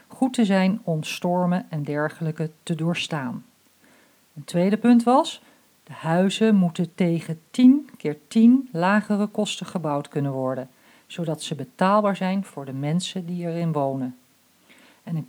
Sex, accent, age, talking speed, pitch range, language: female, Dutch, 50-69, 145 wpm, 165-225 Hz, Dutch